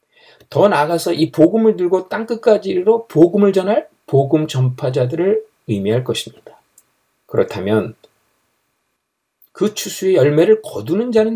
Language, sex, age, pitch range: Korean, male, 50-69, 130-190 Hz